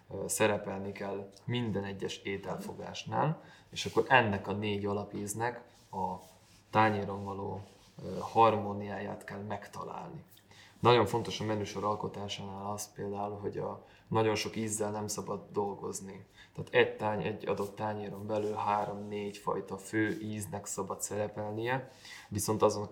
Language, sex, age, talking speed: Hungarian, male, 20-39, 120 wpm